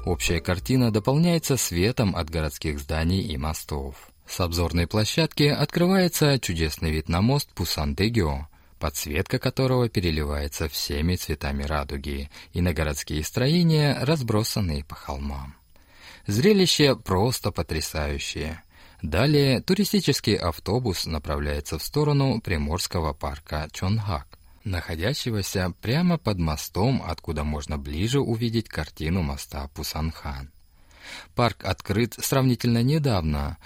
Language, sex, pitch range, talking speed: Russian, male, 80-115 Hz, 105 wpm